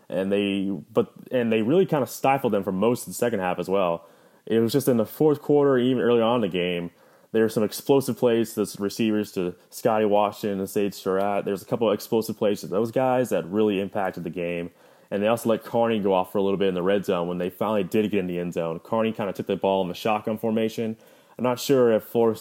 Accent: American